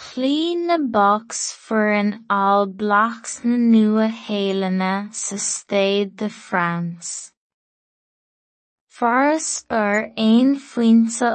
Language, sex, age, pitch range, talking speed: English, female, 20-39, 195-225 Hz, 105 wpm